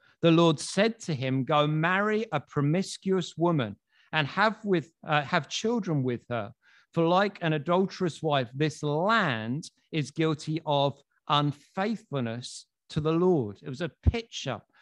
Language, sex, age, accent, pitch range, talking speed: English, male, 50-69, British, 130-170 Hz, 145 wpm